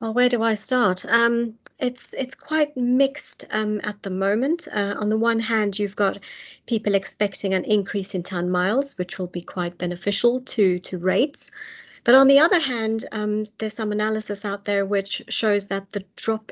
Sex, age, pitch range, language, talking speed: female, 40-59, 195-245 Hz, English, 190 wpm